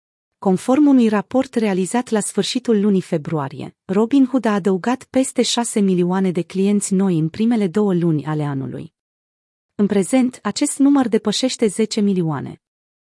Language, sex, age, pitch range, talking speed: Romanian, female, 30-49, 180-225 Hz, 140 wpm